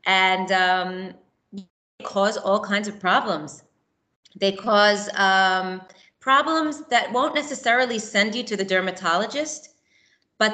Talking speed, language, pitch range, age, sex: 115 wpm, English, 175-220 Hz, 30-49, female